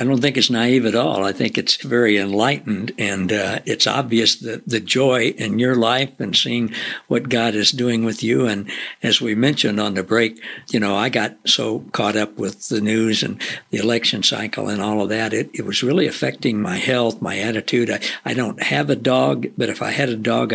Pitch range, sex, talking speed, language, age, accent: 110-130 Hz, male, 220 wpm, English, 60-79, American